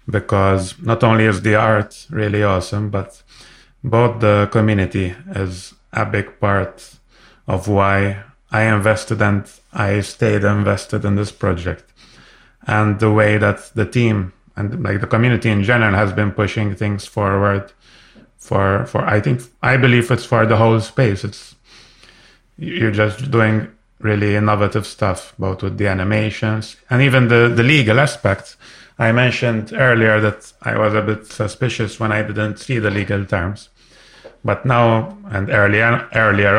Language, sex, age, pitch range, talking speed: English, male, 30-49, 100-115 Hz, 155 wpm